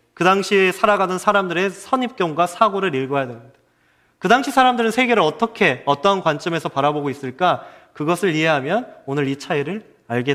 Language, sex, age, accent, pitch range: Korean, male, 30-49, native, 140-210 Hz